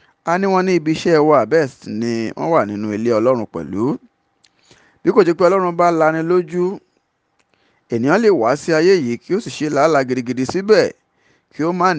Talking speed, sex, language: 195 wpm, male, English